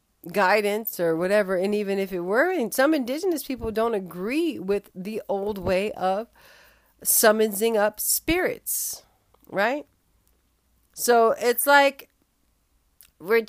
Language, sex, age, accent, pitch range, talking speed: English, female, 50-69, American, 200-275 Hz, 120 wpm